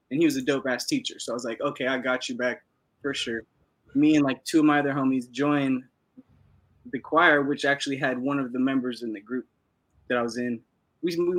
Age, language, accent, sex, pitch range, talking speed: 20-39, English, American, male, 125-155 Hz, 225 wpm